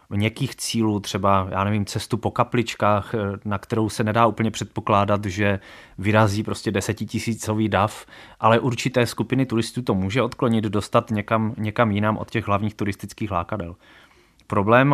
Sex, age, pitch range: male, 20-39, 100-115 Hz